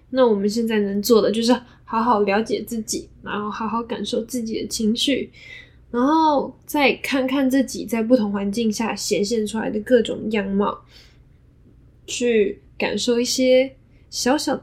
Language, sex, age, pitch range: Chinese, female, 10-29, 205-245 Hz